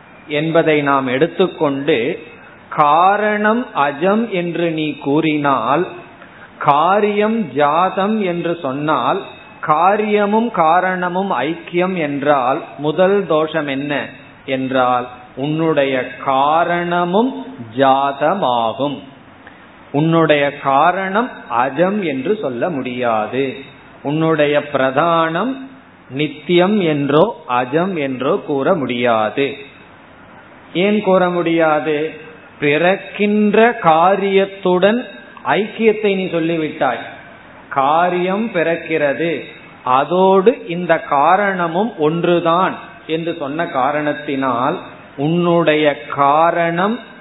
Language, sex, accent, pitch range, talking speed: Tamil, male, native, 145-185 Hz, 60 wpm